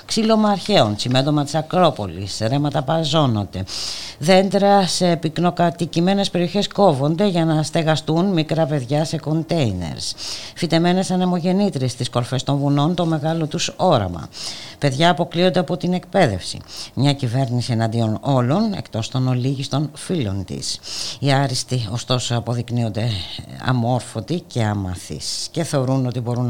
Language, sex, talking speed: Greek, female, 120 wpm